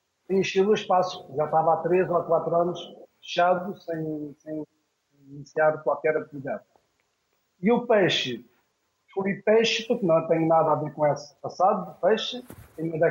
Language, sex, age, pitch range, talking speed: Portuguese, male, 50-69, 155-205 Hz, 160 wpm